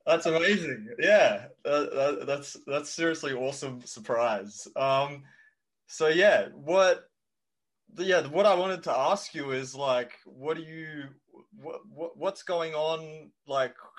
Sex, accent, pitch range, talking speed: male, Australian, 120-160 Hz, 135 wpm